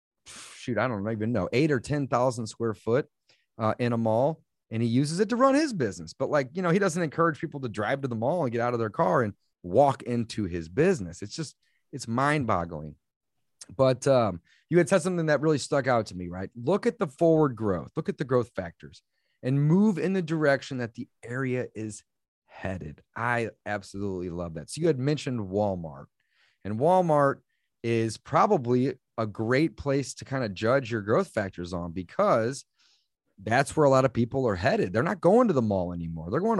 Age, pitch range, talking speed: 30-49, 105-150 Hz, 205 wpm